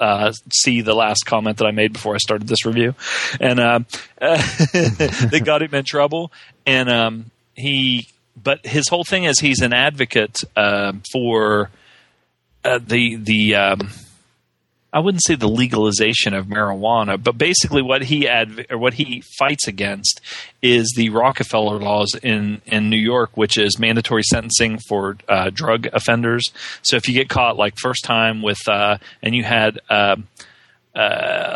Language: English